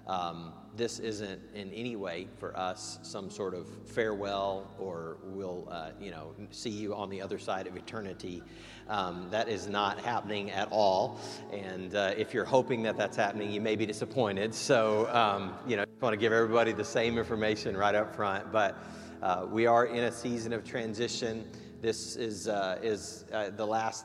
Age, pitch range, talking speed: 40-59, 110-140 Hz, 185 wpm